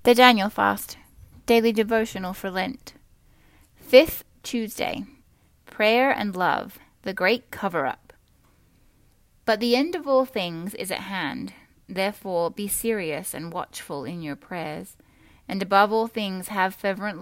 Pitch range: 170-225 Hz